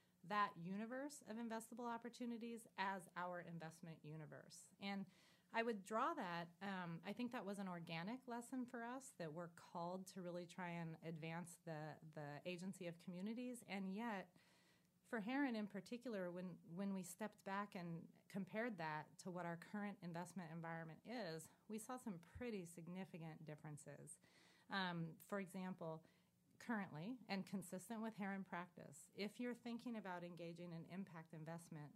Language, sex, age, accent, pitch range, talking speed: English, female, 30-49, American, 170-215 Hz, 150 wpm